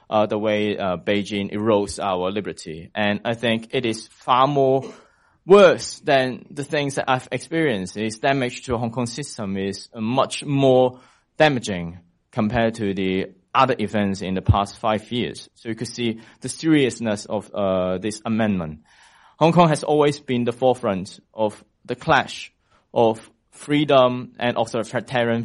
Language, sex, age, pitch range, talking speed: English, male, 20-39, 110-135 Hz, 160 wpm